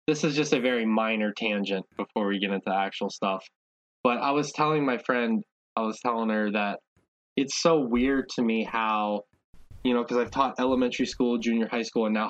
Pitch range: 100-120 Hz